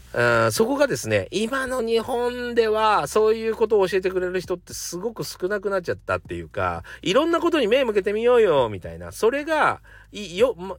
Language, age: Japanese, 40-59